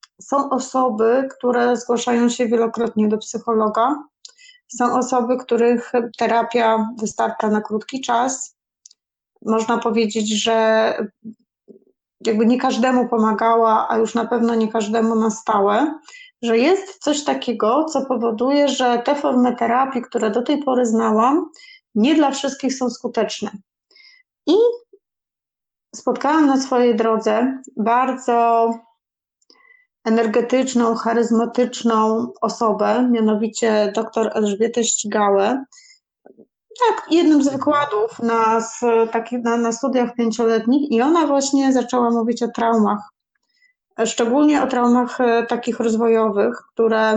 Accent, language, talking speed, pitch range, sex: native, Polish, 110 wpm, 225-260 Hz, female